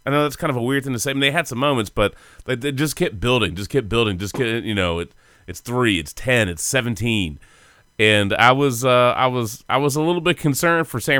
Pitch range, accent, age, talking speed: 95-125 Hz, American, 30-49, 275 wpm